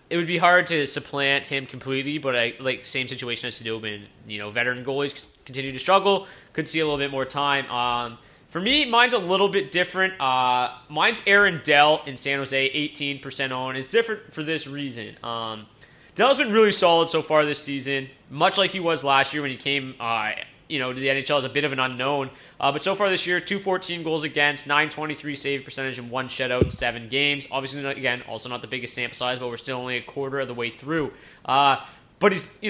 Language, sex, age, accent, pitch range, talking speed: English, male, 20-39, American, 130-160 Hz, 230 wpm